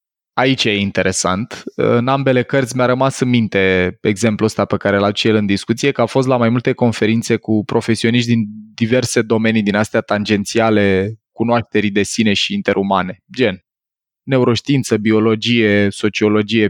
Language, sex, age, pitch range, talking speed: Romanian, male, 20-39, 110-140 Hz, 155 wpm